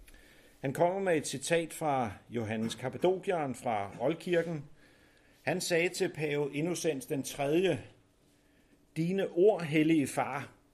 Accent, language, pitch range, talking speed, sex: native, Danish, 130-170 Hz, 115 wpm, male